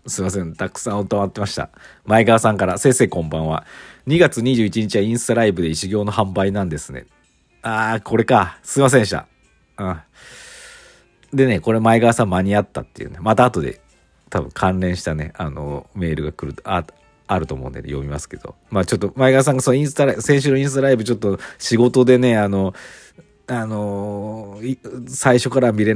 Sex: male